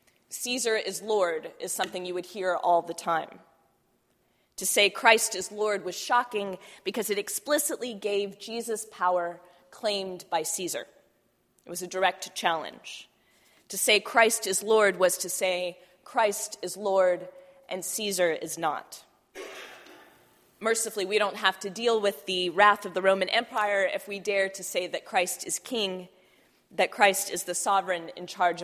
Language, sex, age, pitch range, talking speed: English, female, 20-39, 185-230 Hz, 160 wpm